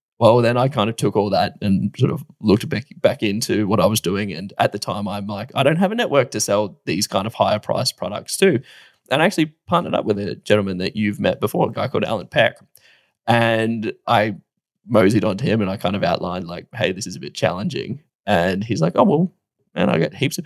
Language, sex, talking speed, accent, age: English, male, 245 wpm, Australian, 10-29